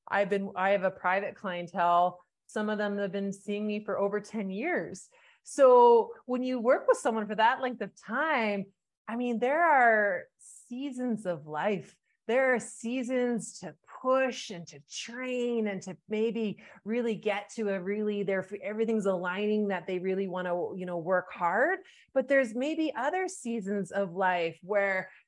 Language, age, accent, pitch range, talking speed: English, 30-49, American, 195-255 Hz, 170 wpm